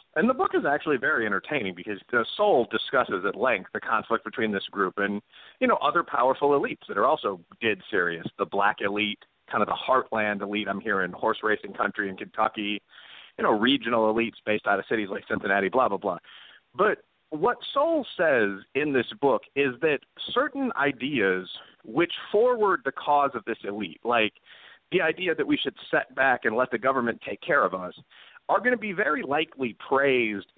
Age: 40-59